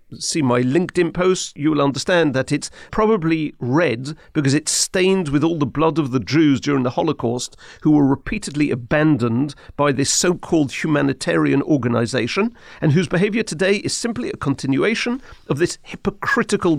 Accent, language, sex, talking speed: British, English, male, 155 wpm